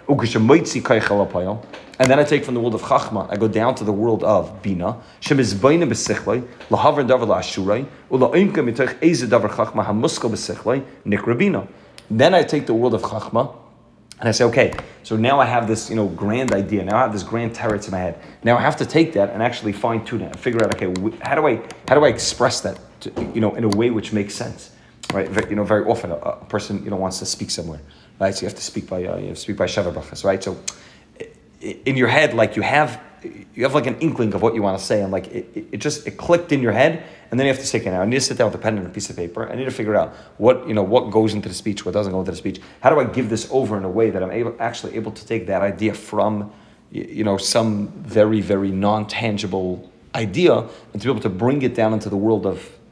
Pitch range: 100-120 Hz